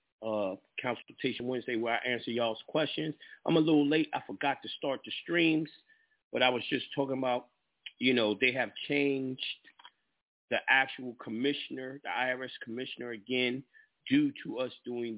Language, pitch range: English, 115-145 Hz